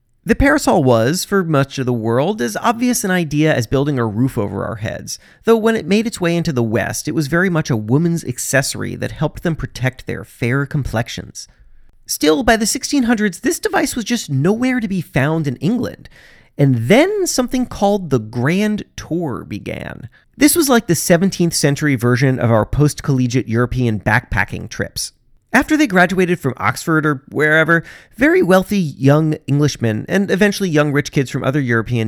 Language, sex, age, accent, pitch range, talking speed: English, male, 30-49, American, 125-210 Hz, 180 wpm